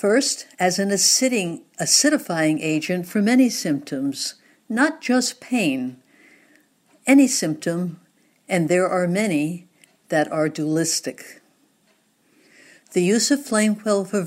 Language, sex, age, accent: English, female, 60-79, American